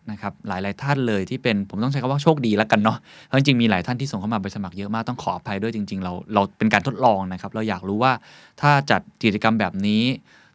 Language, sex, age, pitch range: Thai, male, 20-39, 105-135 Hz